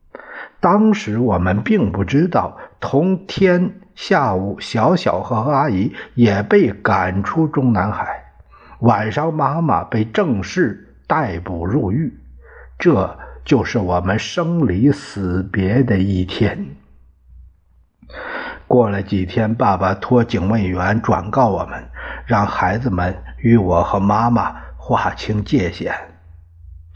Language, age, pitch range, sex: Chinese, 60-79, 95-135 Hz, male